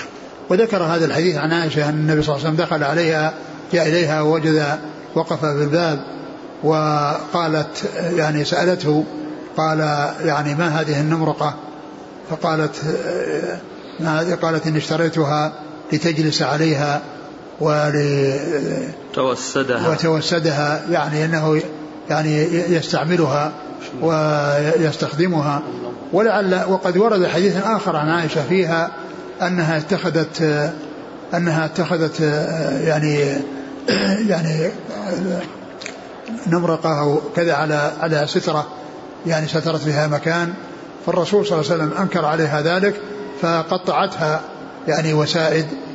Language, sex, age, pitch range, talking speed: Arabic, male, 60-79, 150-170 Hz, 95 wpm